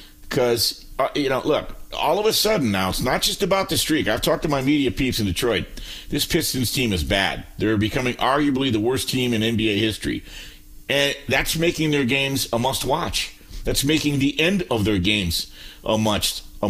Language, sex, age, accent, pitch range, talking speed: English, male, 50-69, American, 105-145 Hz, 200 wpm